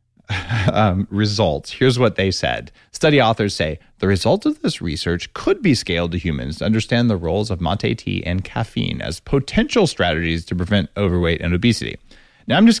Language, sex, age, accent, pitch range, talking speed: English, male, 30-49, American, 85-120 Hz, 185 wpm